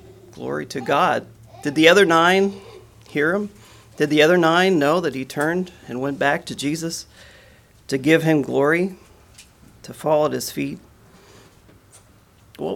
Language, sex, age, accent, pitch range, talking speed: English, male, 40-59, American, 130-160 Hz, 150 wpm